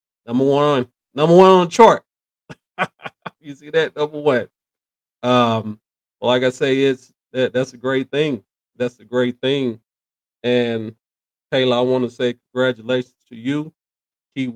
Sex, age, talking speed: male, 40-59, 155 wpm